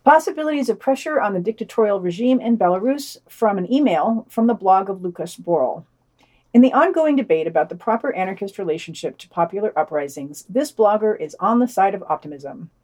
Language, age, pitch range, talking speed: English, 50-69, 185-270 Hz, 180 wpm